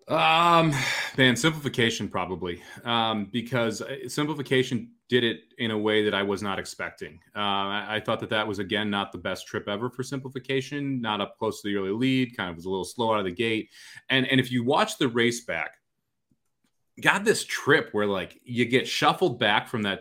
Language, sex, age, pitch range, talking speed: English, male, 30-49, 105-130 Hz, 205 wpm